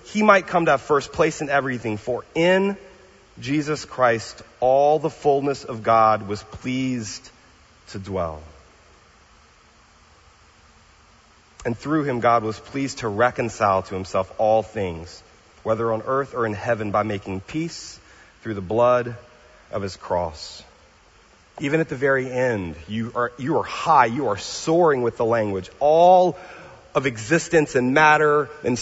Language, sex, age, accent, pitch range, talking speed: English, male, 30-49, American, 105-160 Hz, 150 wpm